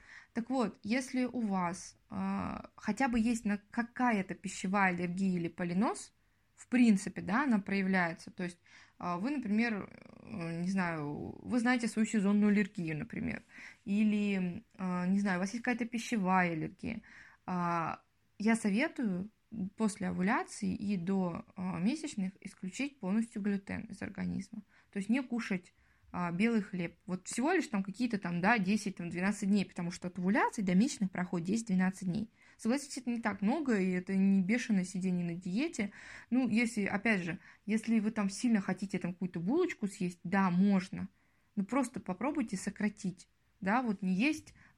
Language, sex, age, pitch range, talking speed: Russian, female, 20-39, 185-230 Hz, 155 wpm